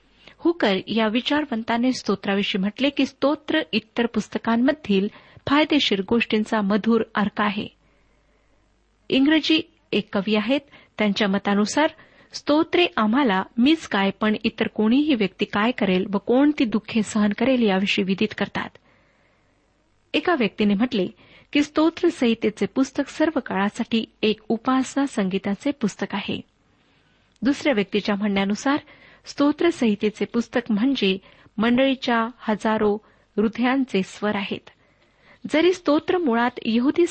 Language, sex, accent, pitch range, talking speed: Marathi, female, native, 205-270 Hz, 105 wpm